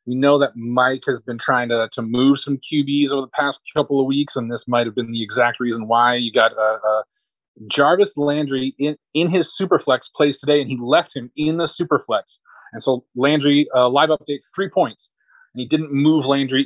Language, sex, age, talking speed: English, male, 30-49, 215 wpm